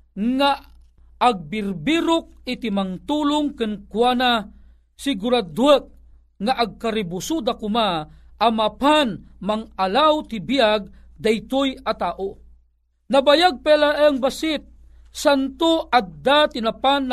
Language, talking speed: Filipino, 75 wpm